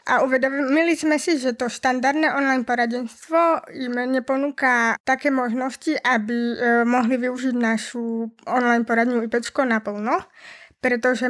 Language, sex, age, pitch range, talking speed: Slovak, female, 20-39, 235-265 Hz, 120 wpm